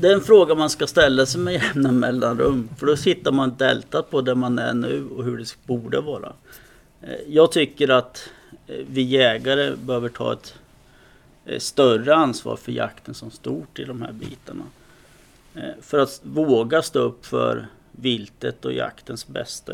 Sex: male